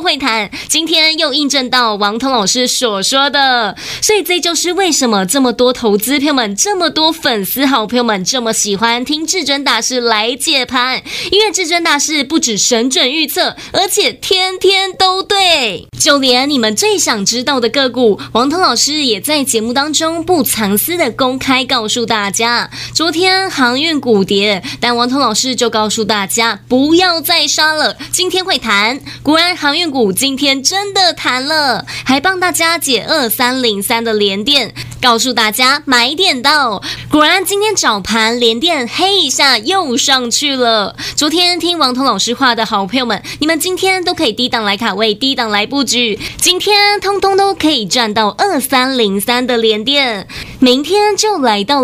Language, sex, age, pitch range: Chinese, female, 20-39, 230-330 Hz